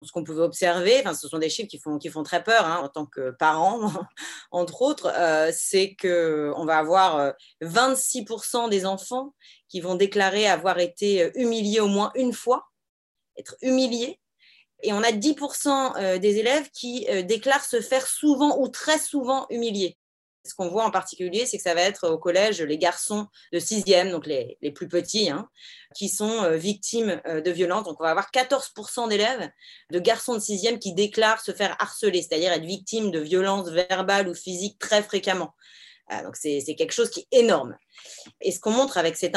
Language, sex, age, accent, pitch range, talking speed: French, female, 30-49, French, 175-235 Hz, 190 wpm